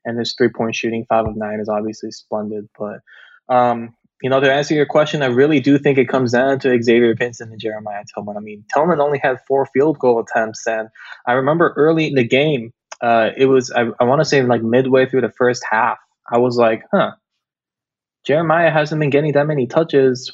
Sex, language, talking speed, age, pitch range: male, English, 210 wpm, 20-39, 115-145 Hz